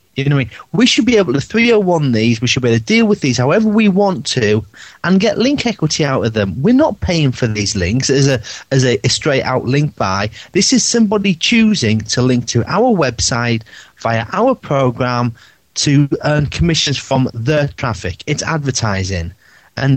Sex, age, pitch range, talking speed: male, 30-49, 115-175 Hz, 205 wpm